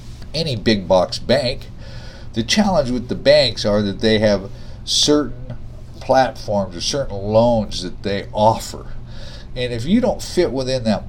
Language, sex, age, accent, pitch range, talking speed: English, male, 50-69, American, 105-125 Hz, 150 wpm